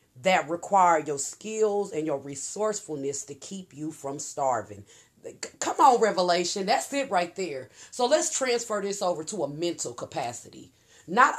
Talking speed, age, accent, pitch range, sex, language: 155 wpm, 40-59, American, 155-215 Hz, female, English